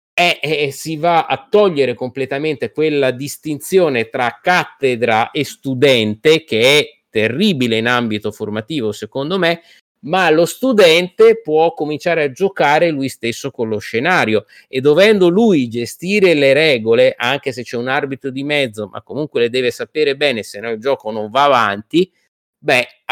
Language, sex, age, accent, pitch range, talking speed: Italian, male, 30-49, native, 120-200 Hz, 150 wpm